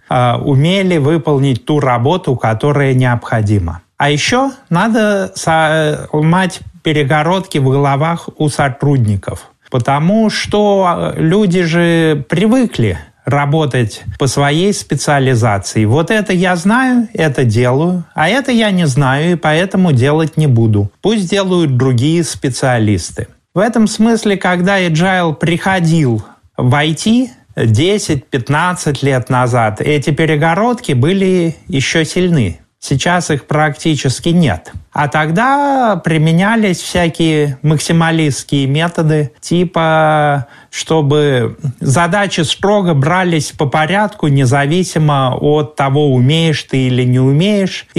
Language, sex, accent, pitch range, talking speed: Russian, male, native, 135-180 Hz, 105 wpm